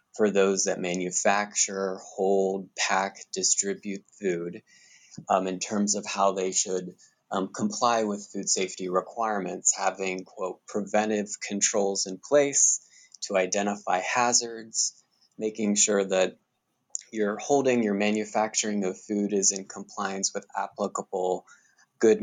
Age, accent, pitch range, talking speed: 20-39, American, 95-110 Hz, 120 wpm